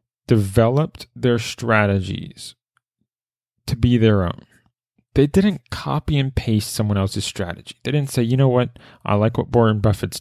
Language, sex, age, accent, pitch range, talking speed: English, male, 20-39, American, 100-130 Hz, 155 wpm